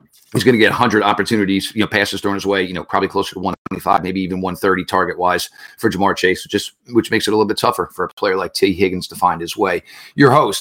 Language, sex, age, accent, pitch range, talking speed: English, male, 40-59, American, 100-120 Hz, 260 wpm